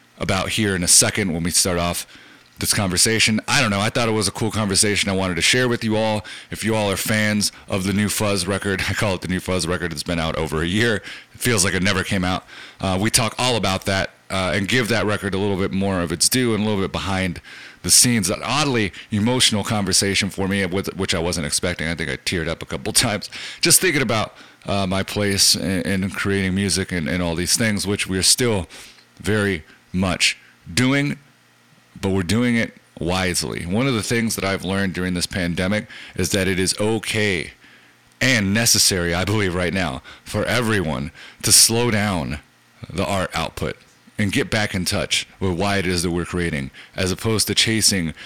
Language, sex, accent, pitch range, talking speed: English, male, American, 90-105 Hz, 215 wpm